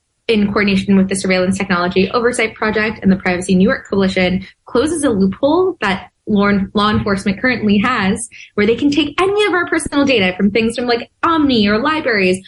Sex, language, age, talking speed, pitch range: female, English, 20-39, 190 wpm, 190-230 Hz